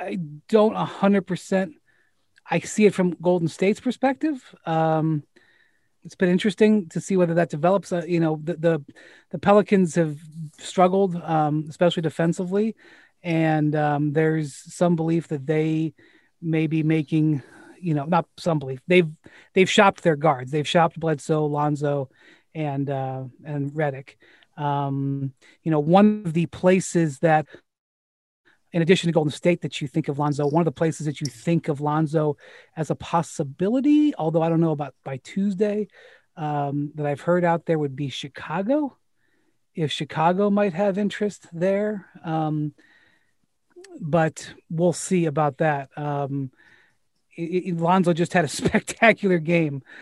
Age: 30-49